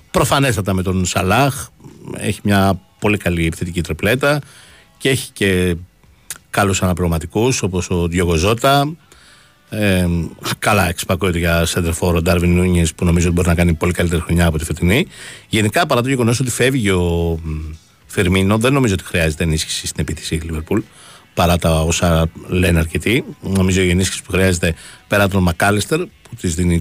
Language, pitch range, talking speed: Greek, 85-110 Hz, 160 wpm